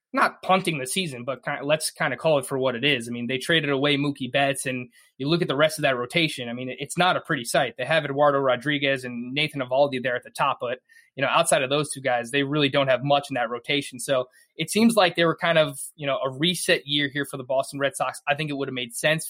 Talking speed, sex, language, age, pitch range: 285 wpm, male, English, 20-39, 140-160 Hz